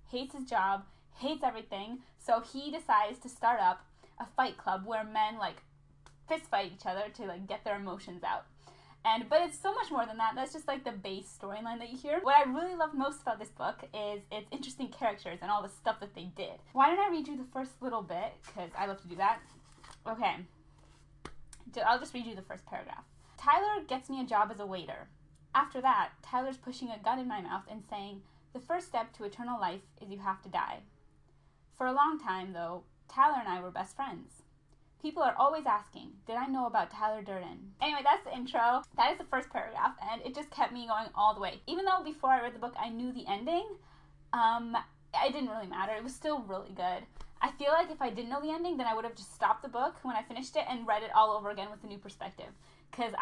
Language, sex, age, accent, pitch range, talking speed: English, female, 10-29, American, 205-270 Hz, 235 wpm